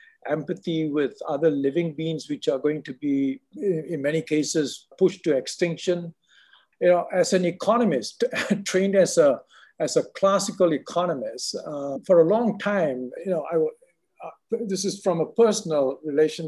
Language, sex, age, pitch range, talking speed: English, male, 60-79, 150-205 Hz, 155 wpm